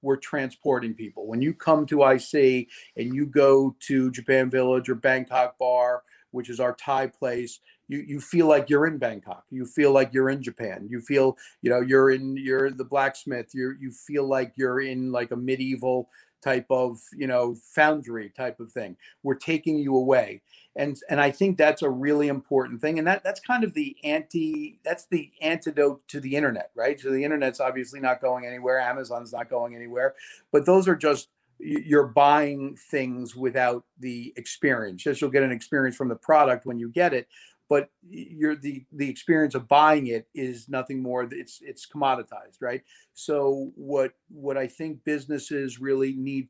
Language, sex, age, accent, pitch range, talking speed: English, male, 50-69, American, 130-150 Hz, 185 wpm